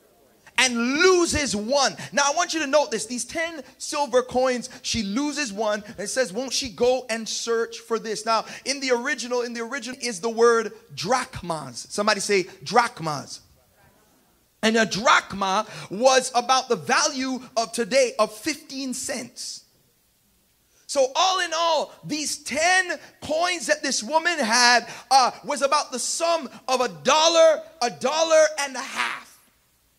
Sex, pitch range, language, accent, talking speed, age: male, 215-275 Hz, English, American, 155 wpm, 30-49